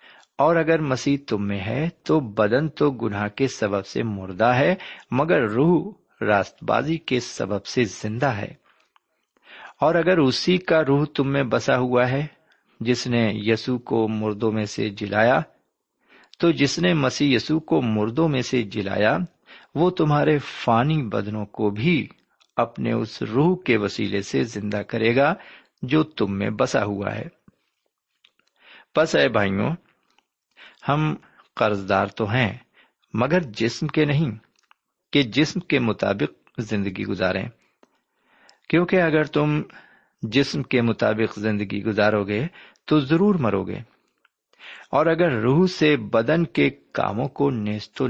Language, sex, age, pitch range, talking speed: Urdu, male, 50-69, 105-155 Hz, 140 wpm